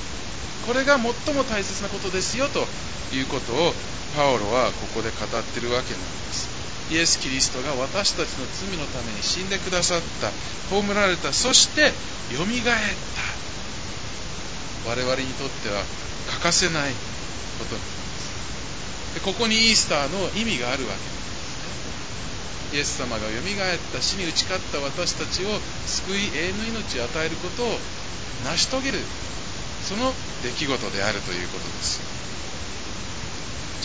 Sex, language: male, Japanese